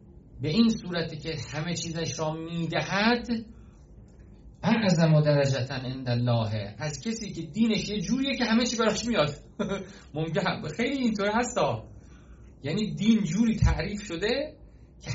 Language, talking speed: Persian, 135 wpm